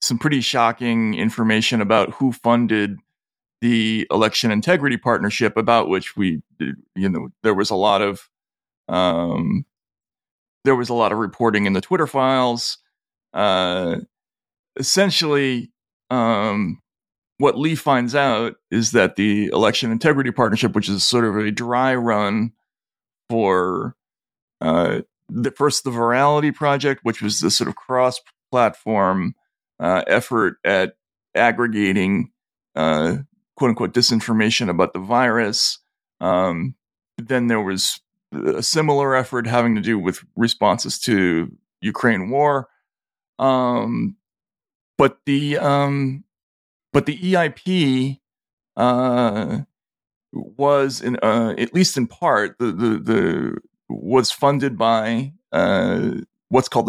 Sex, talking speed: male, 125 wpm